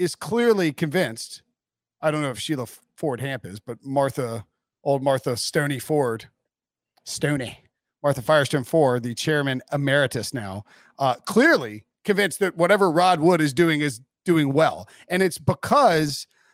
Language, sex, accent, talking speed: English, male, American, 140 wpm